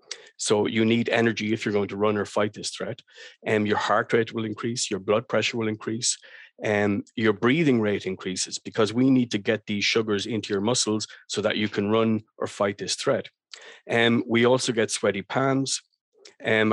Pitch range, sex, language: 105-120 Hz, male, English